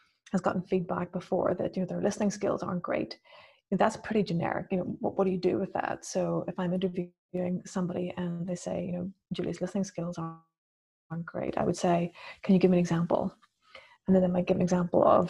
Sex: female